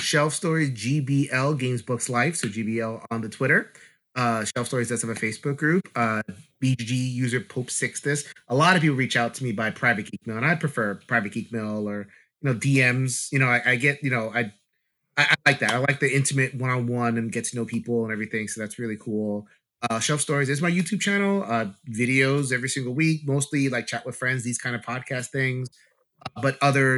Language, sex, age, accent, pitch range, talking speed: English, male, 30-49, American, 115-140 Hz, 220 wpm